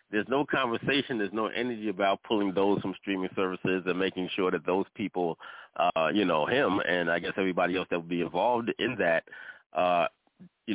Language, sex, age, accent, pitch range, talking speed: English, male, 30-49, American, 85-100 Hz, 195 wpm